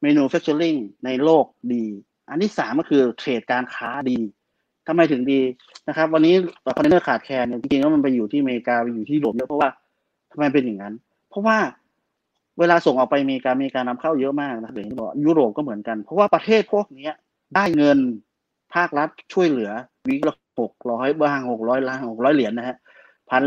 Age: 30-49